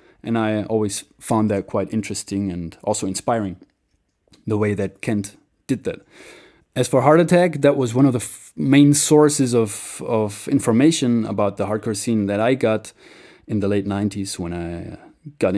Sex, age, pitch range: male, 20-39, 105-120 Hz